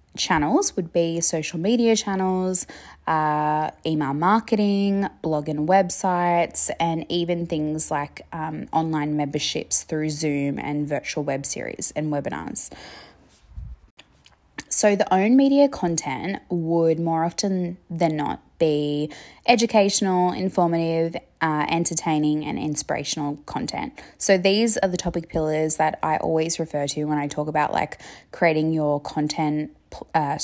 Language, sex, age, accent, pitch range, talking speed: English, female, 20-39, Australian, 150-180 Hz, 130 wpm